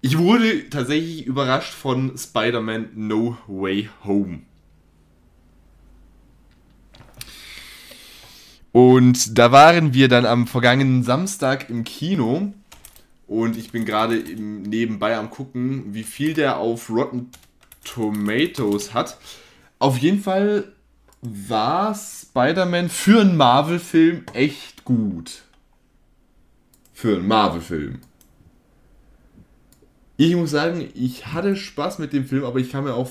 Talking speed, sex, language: 110 wpm, male, German